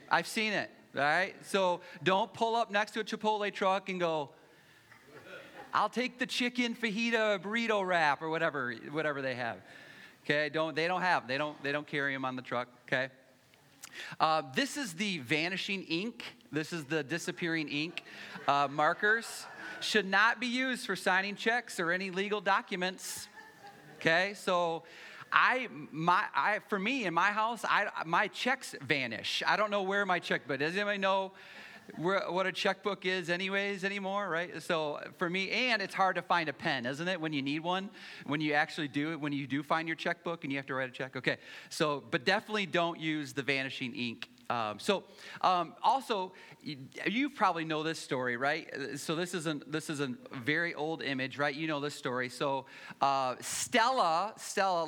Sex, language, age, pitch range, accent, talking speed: male, English, 30-49, 150-195 Hz, American, 185 wpm